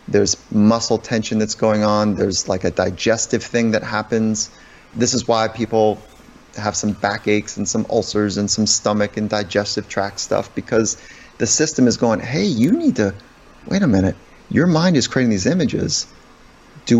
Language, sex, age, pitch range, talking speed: English, male, 30-49, 105-125 Hz, 175 wpm